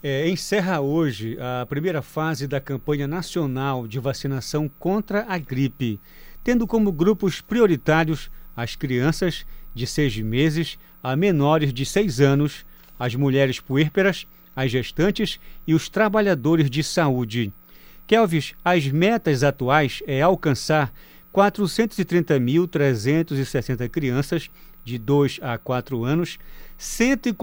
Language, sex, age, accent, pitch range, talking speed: Portuguese, male, 50-69, Brazilian, 135-180 Hz, 110 wpm